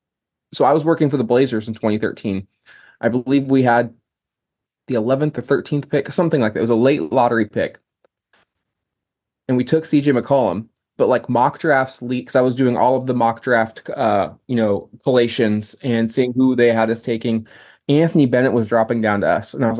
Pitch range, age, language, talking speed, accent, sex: 110-135 Hz, 20-39, English, 200 wpm, American, male